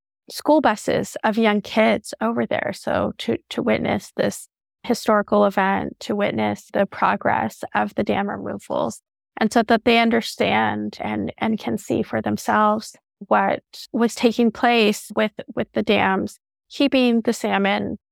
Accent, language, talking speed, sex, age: American, English, 145 wpm, female, 30-49